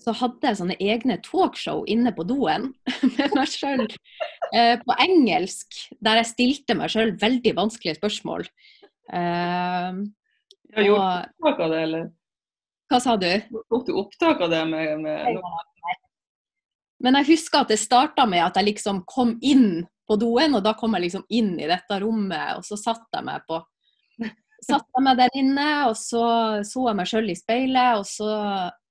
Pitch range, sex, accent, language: 210-310 Hz, female, Swedish, English